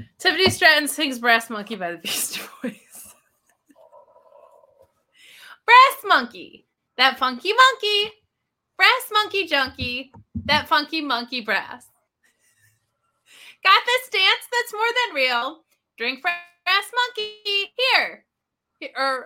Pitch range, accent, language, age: 305-440 Hz, American, English, 20-39